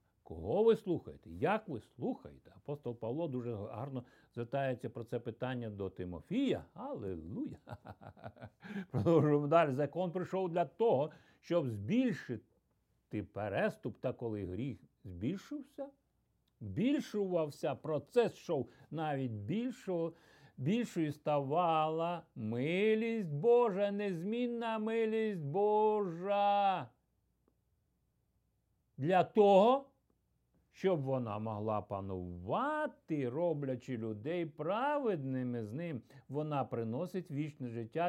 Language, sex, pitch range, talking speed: Ukrainian, male, 120-185 Hz, 90 wpm